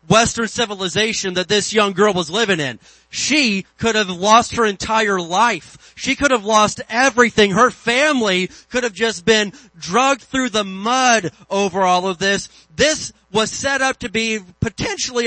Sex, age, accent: male, 30-49, American